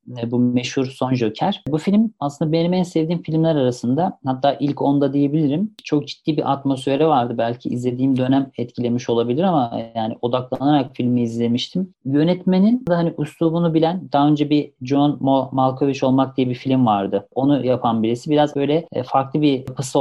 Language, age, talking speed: Turkish, 40-59, 160 wpm